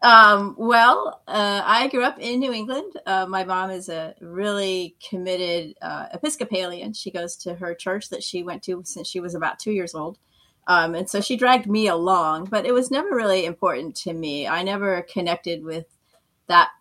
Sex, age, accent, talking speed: female, 30-49, American, 195 wpm